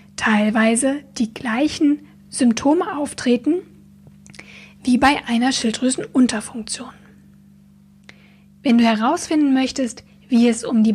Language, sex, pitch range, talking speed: German, female, 220-270 Hz, 95 wpm